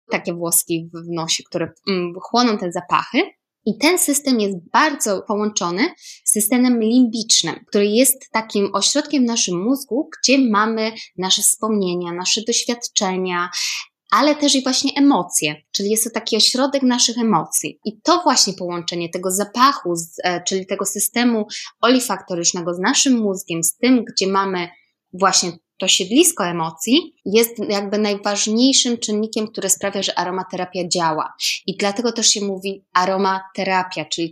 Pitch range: 190-240 Hz